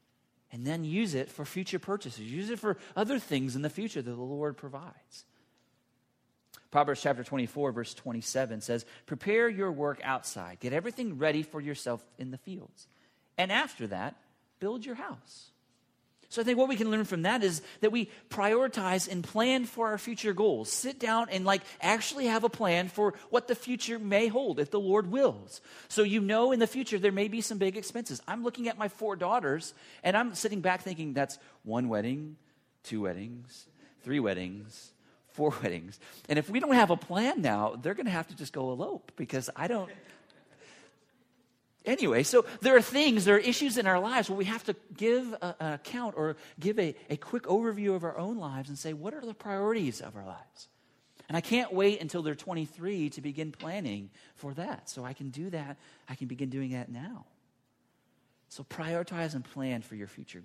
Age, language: 40-59, English